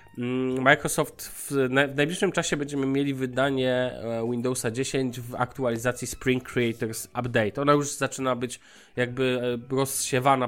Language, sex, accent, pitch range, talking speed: Polish, male, native, 120-140 Hz, 115 wpm